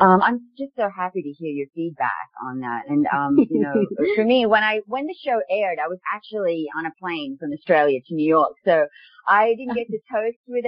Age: 30-49